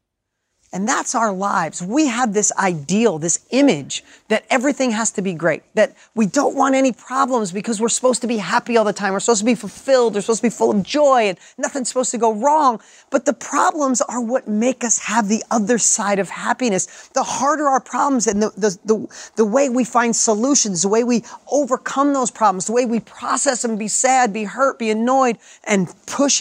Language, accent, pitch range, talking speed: English, American, 210-255 Hz, 215 wpm